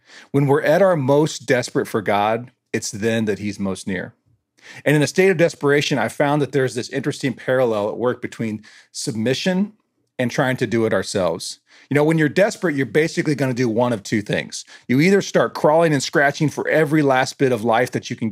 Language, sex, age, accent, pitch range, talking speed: English, male, 40-59, American, 115-150 Hz, 215 wpm